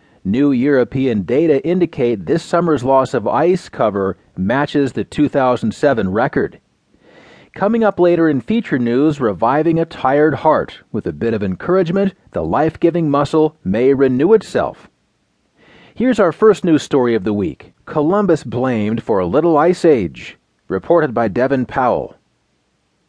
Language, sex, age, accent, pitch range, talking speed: English, male, 40-59, American, 120-165 Hz, 140 wpm